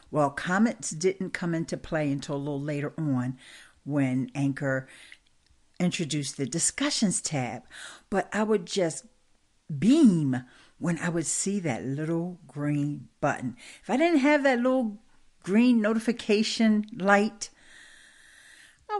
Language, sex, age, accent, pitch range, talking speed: English, female, 60-79, American, 135-200 Hz, 125 wpm